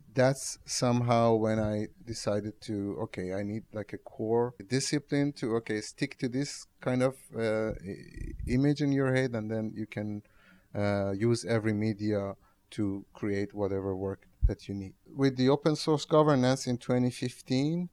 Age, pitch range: 30-49, 110-135 Hz